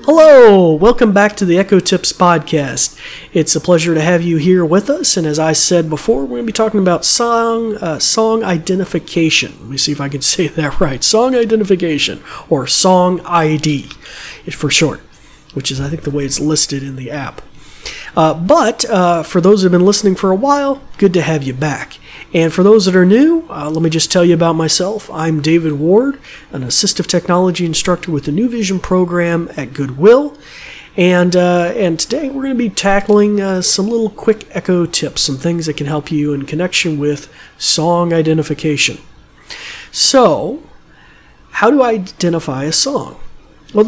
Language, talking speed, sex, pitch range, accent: English, 185 wpm, male, 155-200 Hz, American